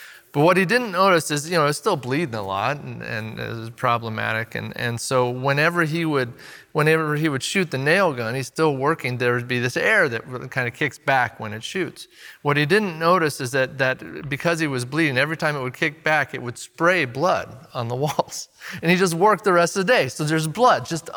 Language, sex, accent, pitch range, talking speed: English, male, American, 140-195 Hz, 240 wpm